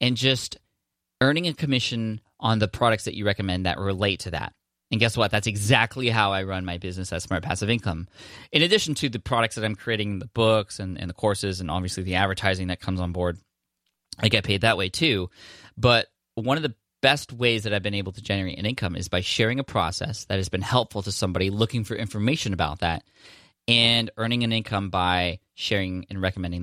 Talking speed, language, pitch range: 215 wpm, English, 90-115 Hz